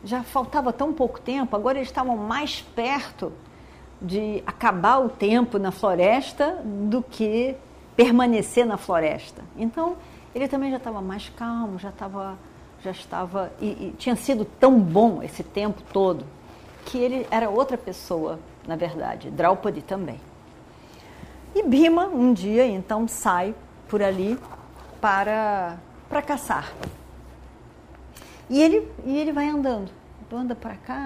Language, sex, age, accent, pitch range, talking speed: Portuguese, female, 50-69, Brazilian, 195-260 Hz, 135 wpm